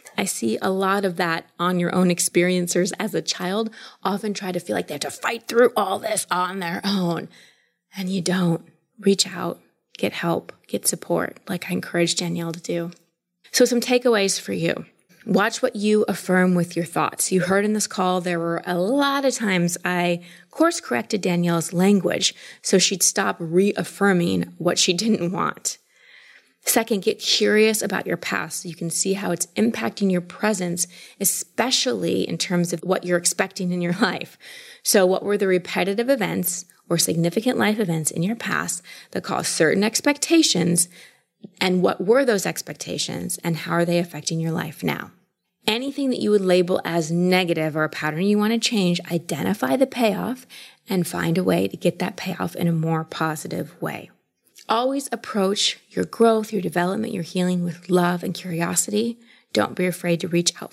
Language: English